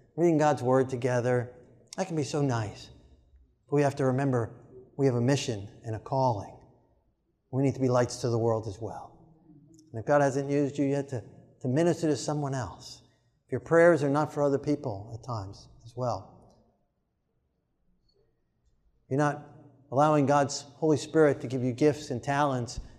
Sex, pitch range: male, 120-145 Hz